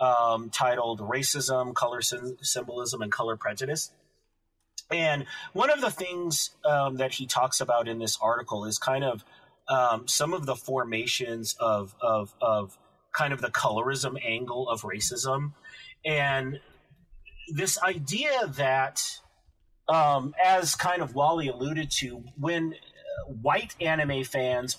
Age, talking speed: 30-49, 130 wpm